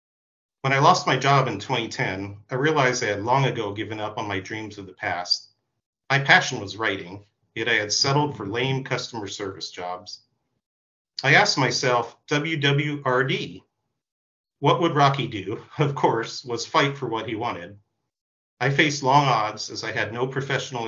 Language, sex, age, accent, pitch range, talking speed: English, male, 40-59, American, 105-140 Hz, 170 wpm